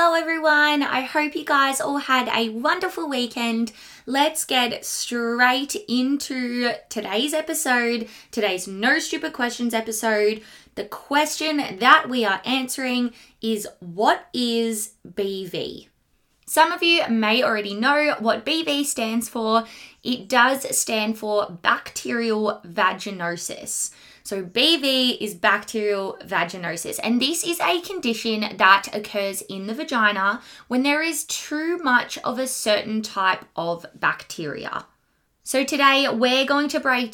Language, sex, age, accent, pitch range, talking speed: English, female, 20-39, Australian, 210-275 Hz, 130 wpm